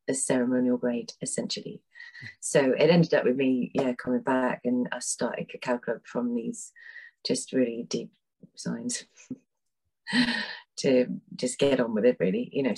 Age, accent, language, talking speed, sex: 30-49, British, English, 155 wpm, female